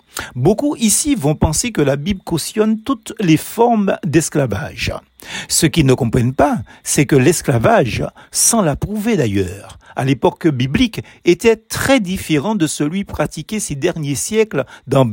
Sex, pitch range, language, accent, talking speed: male, 145-215 Hz, French, French, 145 wpm